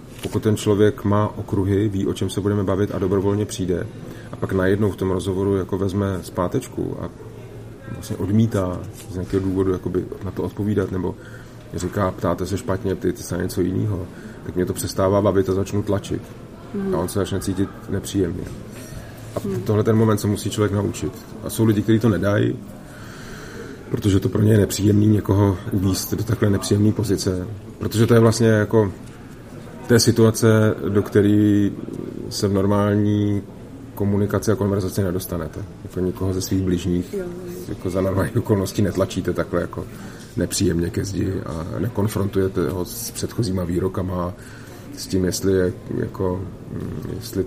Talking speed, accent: 160 wpm, native